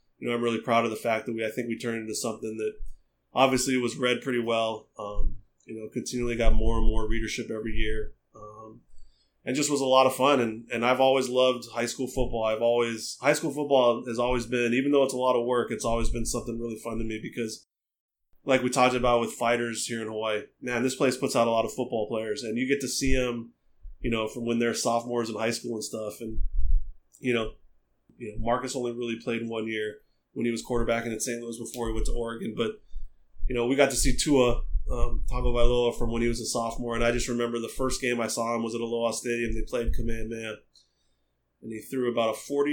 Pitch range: 110-125 Hz